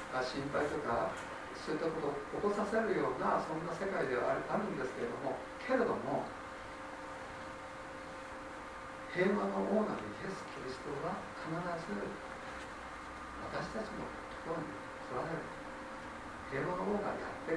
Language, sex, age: Japanese, male, 60-79